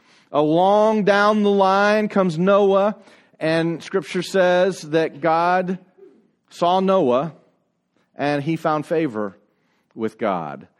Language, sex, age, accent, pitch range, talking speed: English, male, 40-59, American, 145-185 Hz, 105 wpm